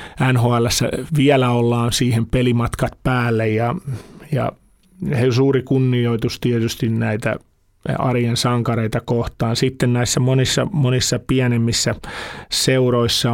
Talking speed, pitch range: 95 wpm, 115-130 Hz